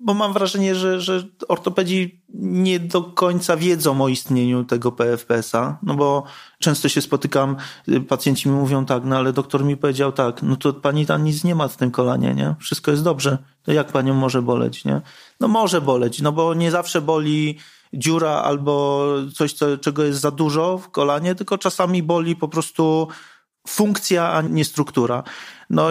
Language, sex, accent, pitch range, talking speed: Polish, male, native, 130-160 Hz, 175 wpm